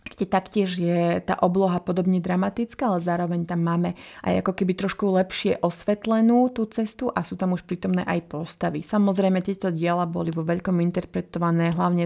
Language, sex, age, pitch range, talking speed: Slovak, female, 30-49, 175-195 Hz, 170 wpm